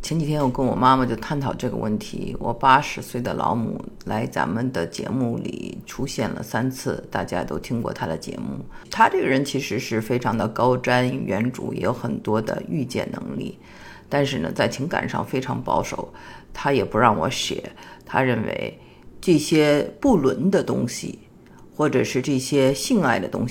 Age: 50-69